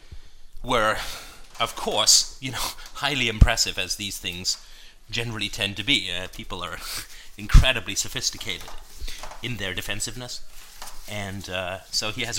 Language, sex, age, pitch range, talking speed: English, male, 30-49, 95-115 Hz, 130 wpm